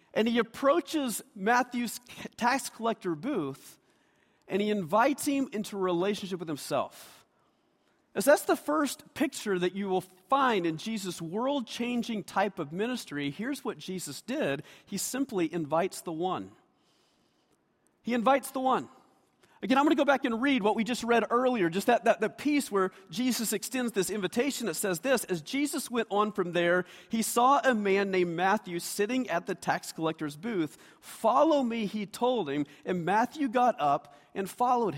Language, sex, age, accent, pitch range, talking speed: English, male, 40-59, American, 185-255 Hz, 170 wpm